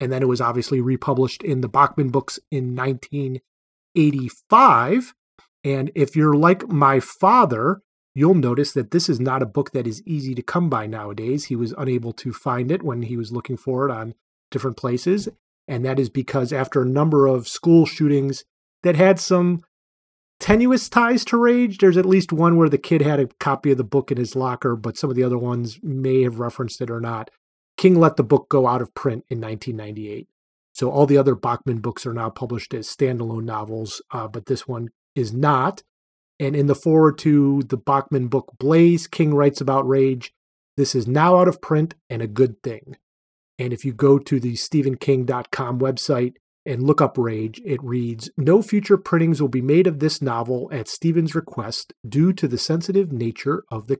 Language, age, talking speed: English, 30-49, 195 wpm